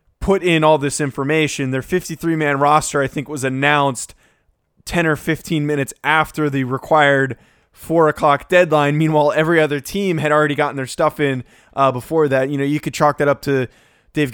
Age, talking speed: 20-39, 190 wpm